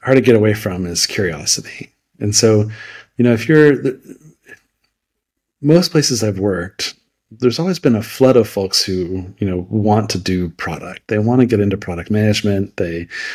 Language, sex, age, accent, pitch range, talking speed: English, male, 40-59, American, 95-120 Hz, 175 wpm